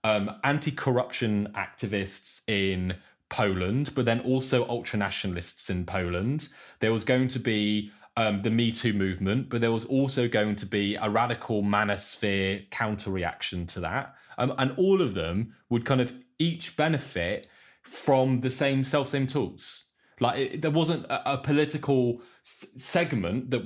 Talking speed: 145 wpm